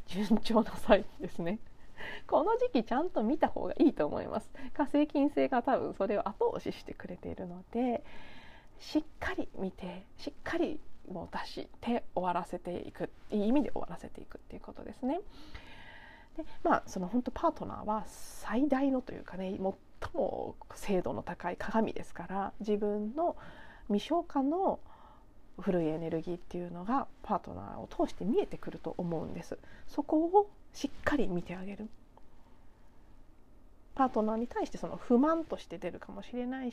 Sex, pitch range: female, 190-285 Hz